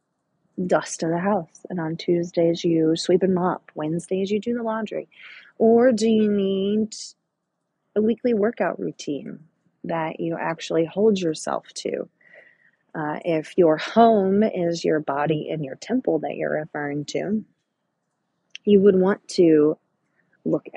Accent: American